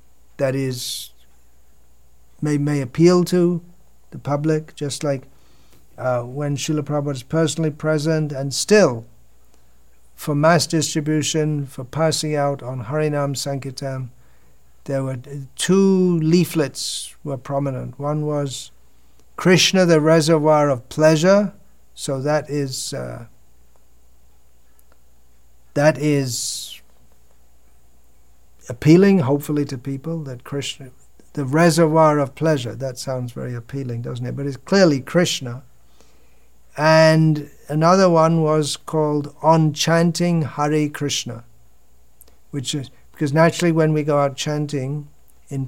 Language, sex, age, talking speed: English, male, 50-69, 115 wpm